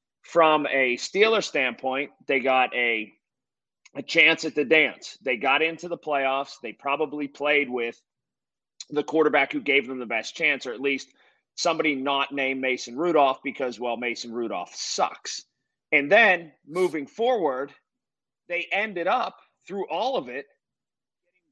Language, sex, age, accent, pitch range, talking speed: English, male, 30-49, American, 140-175 Hz, 150 wpm